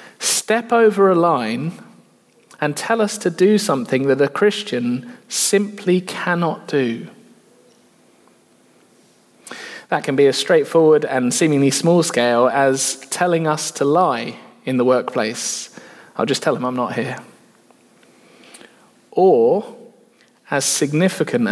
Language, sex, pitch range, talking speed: English, male, 130-185 Hz, 120 wpm